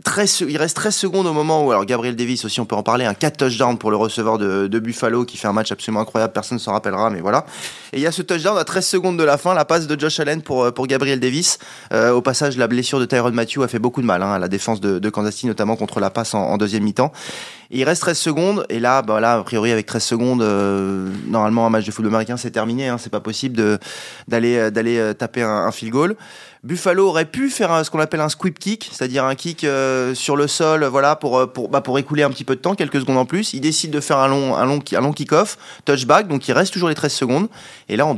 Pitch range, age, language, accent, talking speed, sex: 110-145 Hz, 20-39, French, French, 280 wpm, male